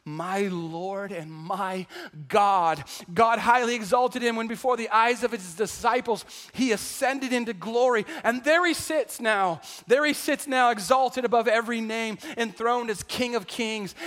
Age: 40-59